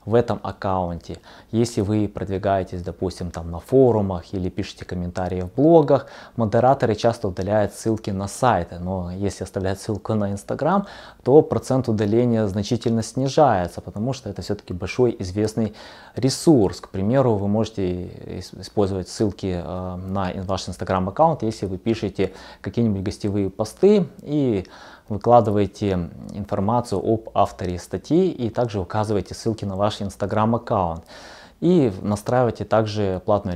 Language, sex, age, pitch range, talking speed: Russian, male, 20-39, 95-115 Hz, 130 wpm